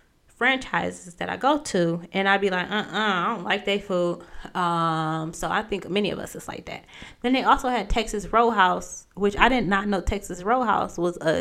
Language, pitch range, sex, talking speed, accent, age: English, 185-235 Hz, female, 215 wpm, American, 20-39